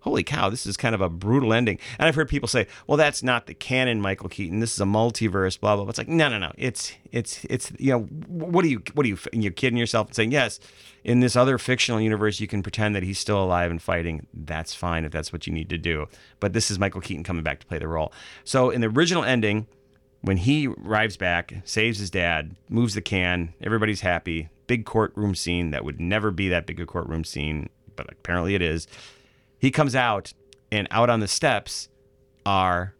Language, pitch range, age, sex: English, 90-120 Hz, 40-59, male